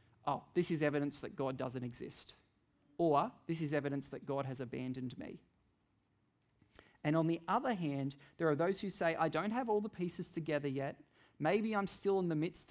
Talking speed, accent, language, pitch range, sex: 195 wpm, Australian, English, 140-165 Hz, male